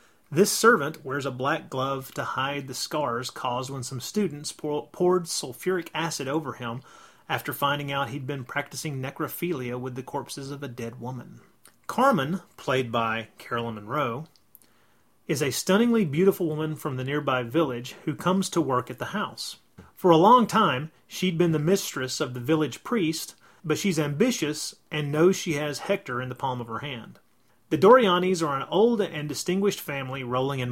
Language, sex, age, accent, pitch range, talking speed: English, male, 30-49, American, 130-175 Hz, 175 wpm